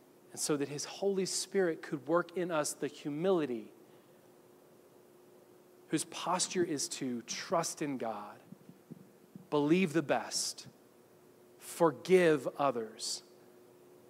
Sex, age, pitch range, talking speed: male, 30-49, 145-180 Hz, 100 wpm